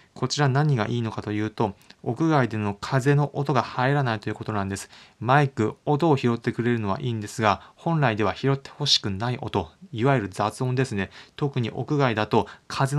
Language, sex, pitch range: Japanese, male, 105-135 Hz